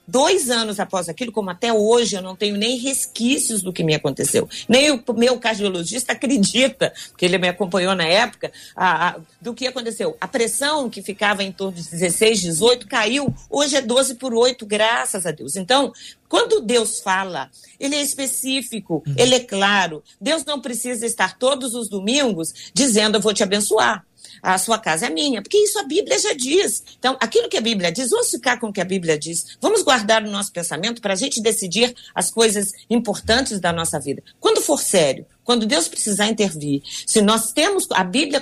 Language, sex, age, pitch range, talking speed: Portuguese, female, 50-69, 190-255 Hz, 190 wpm